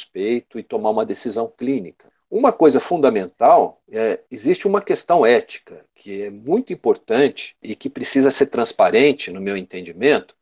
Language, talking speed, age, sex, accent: Portuguese, 145 wpm, 50-69, male, Brazilian